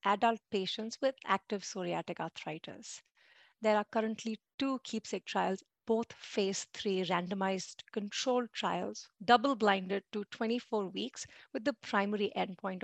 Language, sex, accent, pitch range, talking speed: English, female, Indian, 190-225 Hz, 120 wpm